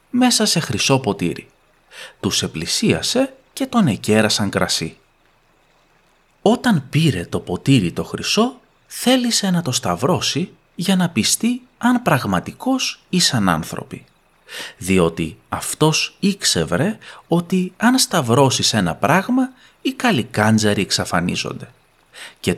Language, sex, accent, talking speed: Greek, male, native, 105 wpm